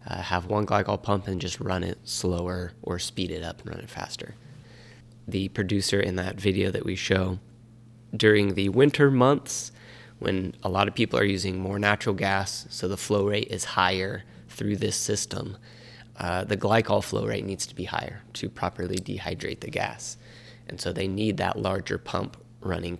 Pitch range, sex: 95-115 Hz, male